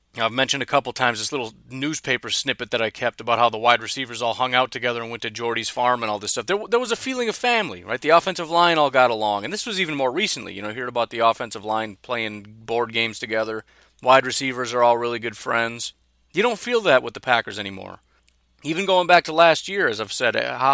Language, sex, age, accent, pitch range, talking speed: English, male, 30-49, American, 115-140 Hz, 250 wpm